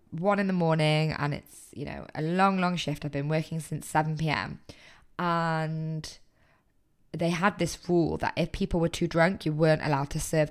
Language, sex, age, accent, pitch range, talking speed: English, female, 20-39, British, 150-175 Hz, 195 wpm